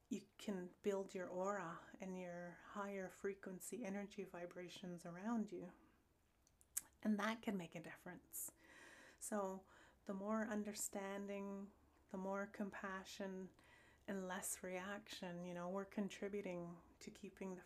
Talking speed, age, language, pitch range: 120 wpm, 30-49, English, 180-205 Hz